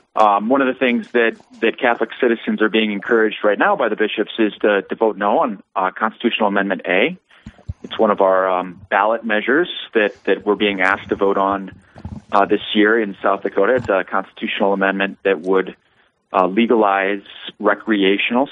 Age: 30-49